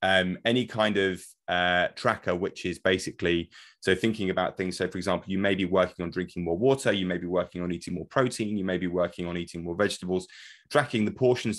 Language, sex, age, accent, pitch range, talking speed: English, male, 30-49, British, 90-105 Hz, 225 wpm